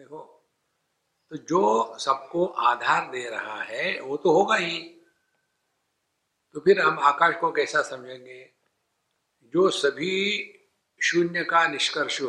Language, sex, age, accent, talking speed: English, male, 60-79, Indian, 110 wpm